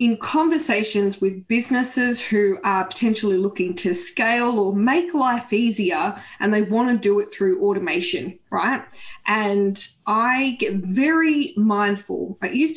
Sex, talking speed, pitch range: female, 140 wpm, 195-240 Hz